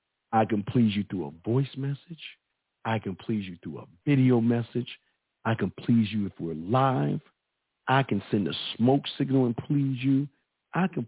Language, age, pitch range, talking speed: English, 50-69, 105-145 Hz, 185 wpm